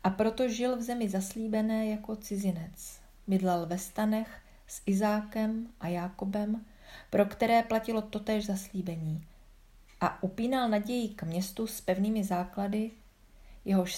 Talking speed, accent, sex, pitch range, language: 125 wpm, native, female, 185-220 Hz, Czech